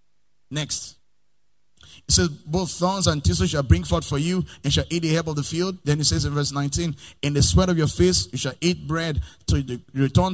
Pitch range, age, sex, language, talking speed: 125-160 Hz, 30-49, male, English, 225 wpm